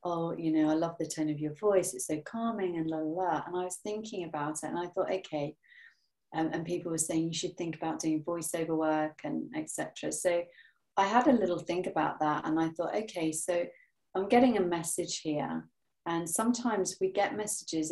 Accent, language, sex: British, English, female